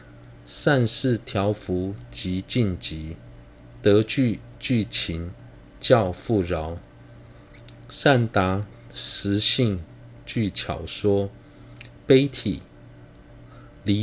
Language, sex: Chinese, male